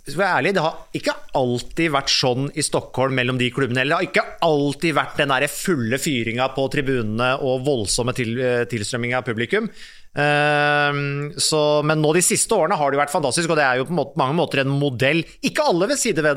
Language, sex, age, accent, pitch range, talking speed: English, male, 30-49, Norwegian, 135-185 Hz, 210 wpm